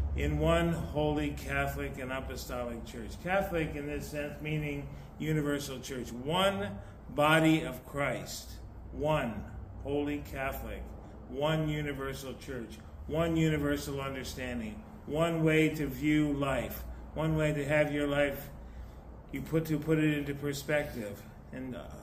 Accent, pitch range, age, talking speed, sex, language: American, 100-150 Hz, 50-69, 125 wpm, male, English